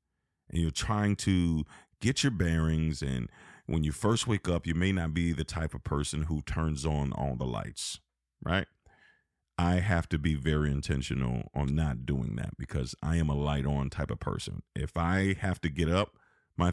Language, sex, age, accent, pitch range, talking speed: English, male, 40-59, American, 80-110 Hz, 195 wpm